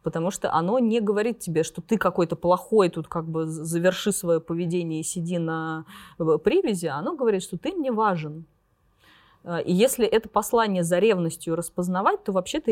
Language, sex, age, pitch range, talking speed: Russian, female, 20-39, 160-205 Hz, 165 wpm